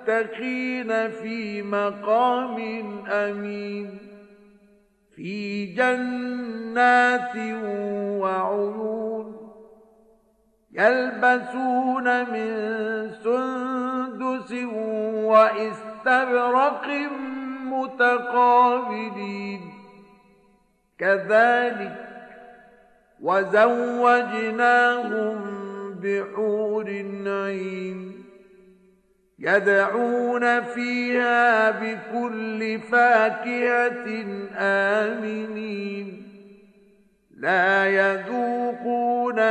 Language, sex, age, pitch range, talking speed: Arabic, male, 50-69, 205-245 Hz, 35 wpm